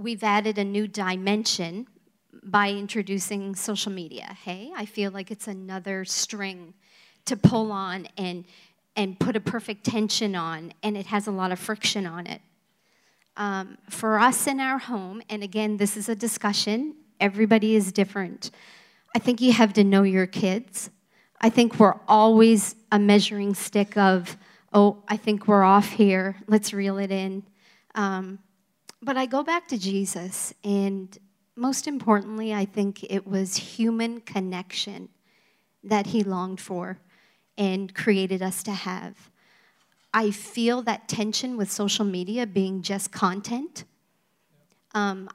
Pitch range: 195-220 Hz